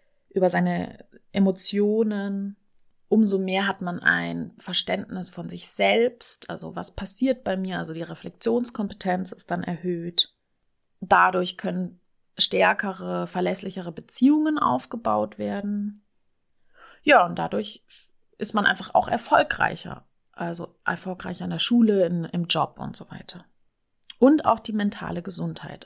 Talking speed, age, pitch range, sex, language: 125 wpm, 30-49, 175-220 Hz, female, German